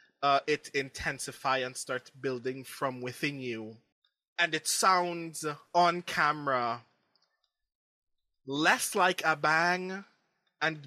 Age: 20-39